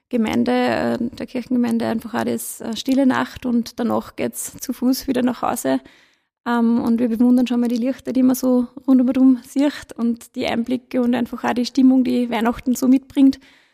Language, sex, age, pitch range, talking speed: German, female, 20-39, 235-260 Hz, 185 wpm